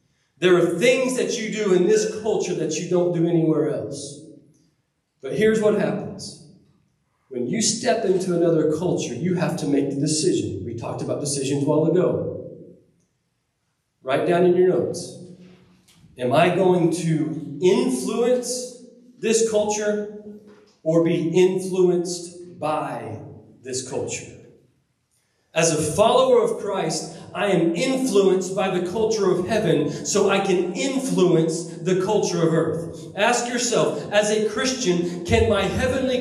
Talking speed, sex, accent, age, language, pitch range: 140 wpm, male, American, 40-59, English, 150-200 Hz